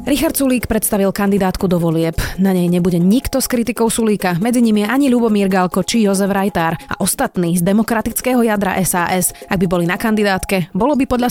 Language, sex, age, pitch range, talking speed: Slovak, female, 20-39, 180-235 Hz, 190 wpm